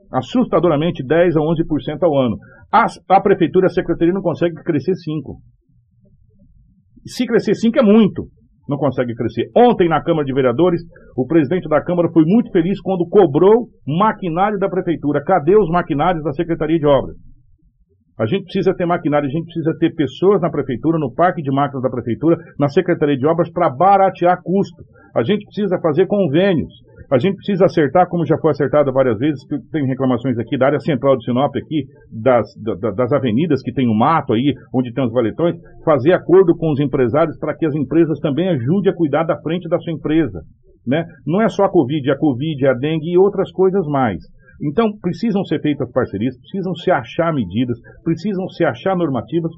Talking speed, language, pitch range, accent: 190 wpm, Portuguese, 140-180 Hz, Brazilian